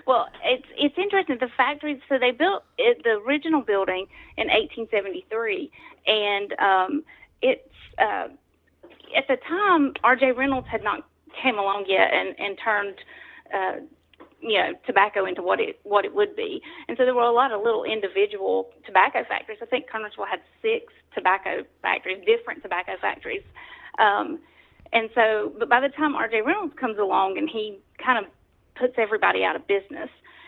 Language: English